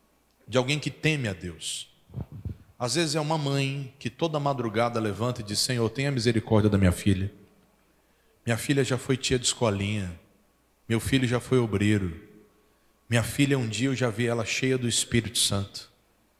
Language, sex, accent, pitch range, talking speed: Portuguese, male, Brazilian, 110-135 Hz, 170 wpm